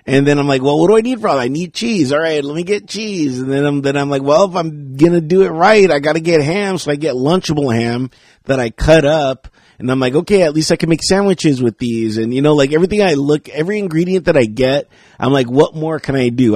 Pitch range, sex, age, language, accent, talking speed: 120-155 Hz, male, 30-49, English, American, 285 wpm